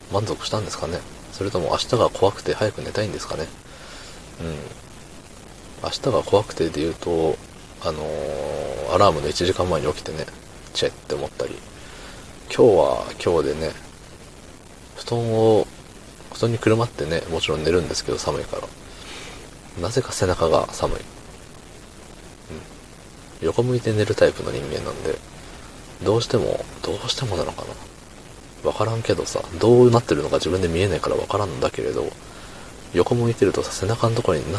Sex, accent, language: male, native, Japanese